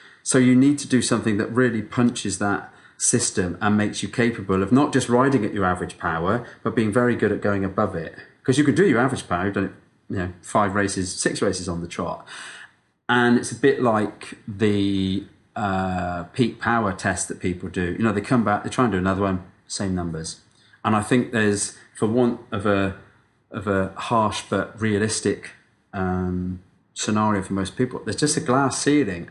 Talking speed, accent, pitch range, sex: 195 wpm, British, 95-120 Hz, male